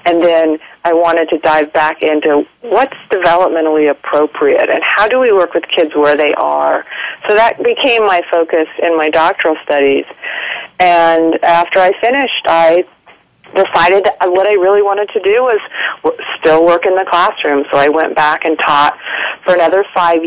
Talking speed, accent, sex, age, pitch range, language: 175 wpm, American, female, 40-59, 160-200 Hz, English